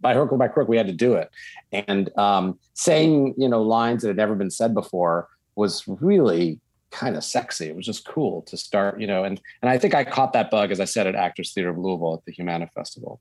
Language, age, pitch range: English, 40-59, 100-135 Hz